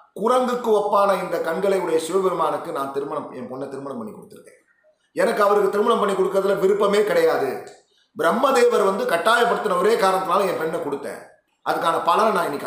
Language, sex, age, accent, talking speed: Tamil, male, 30-49, native, 150 wpm